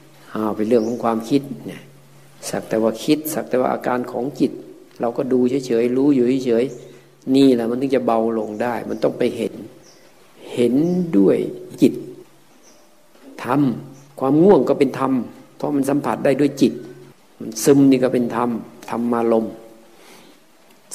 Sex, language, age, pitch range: male, Thai, 60-79, 115-135 Hz